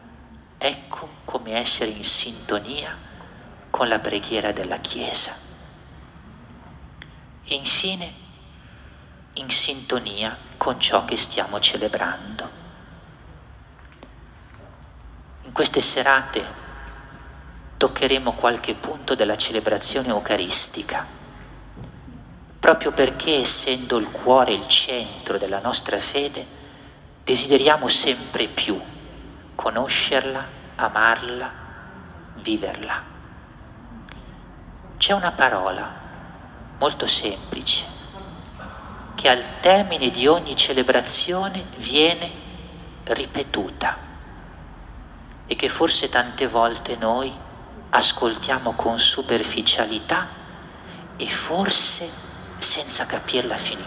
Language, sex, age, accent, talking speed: Italian, male, 40-59, native, 80 wpm